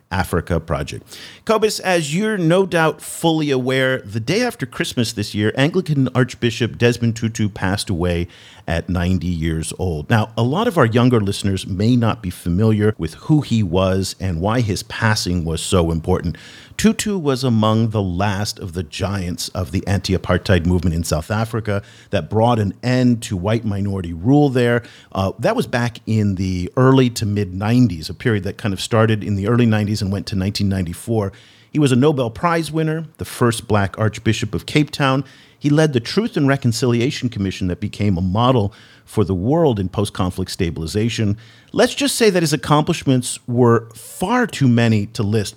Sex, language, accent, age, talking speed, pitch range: male, English, American, 50-69, 180 wpm, 95-135 Hz